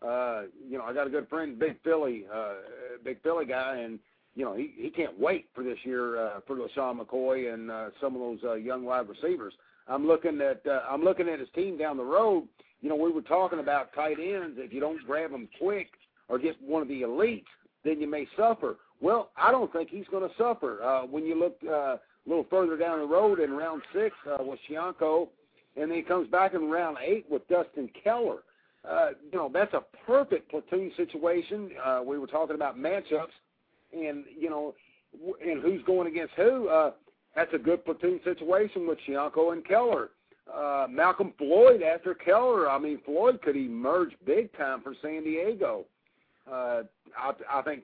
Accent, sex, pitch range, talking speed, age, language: American, male, 140-185 Hz, 200 wpm, 50-69, English